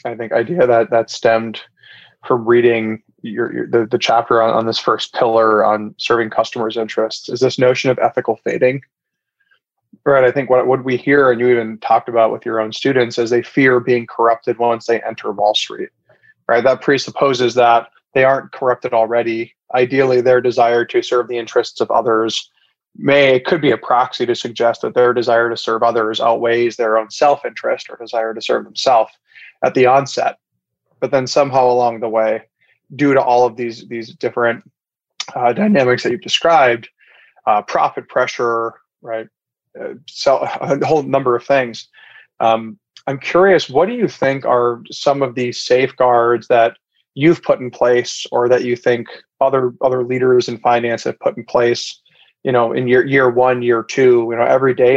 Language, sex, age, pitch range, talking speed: English, male, 20-39, 115-130 Hz, 185 wpm